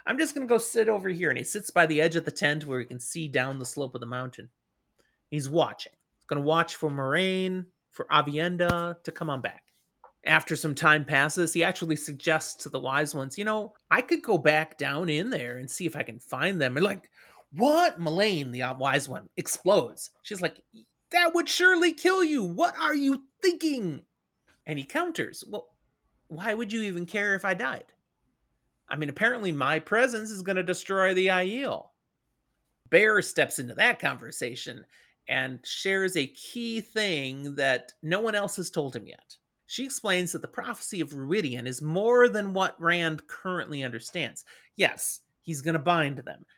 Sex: male